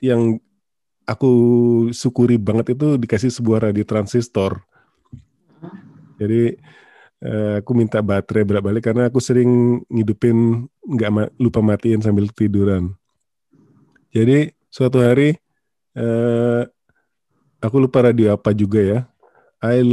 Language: Indonesian